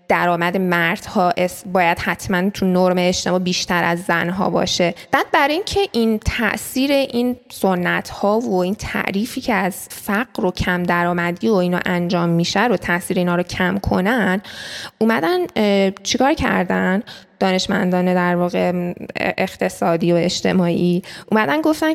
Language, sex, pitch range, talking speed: Persian, female, 175-220 Hz, 135 wpm